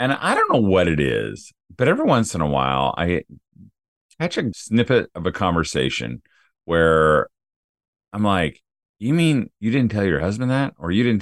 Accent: American